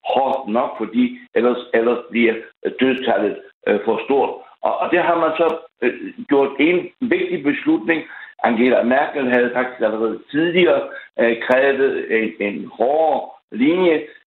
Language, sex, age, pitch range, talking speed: Danish, male, 60-79, 120-165 Hz, 120 wpm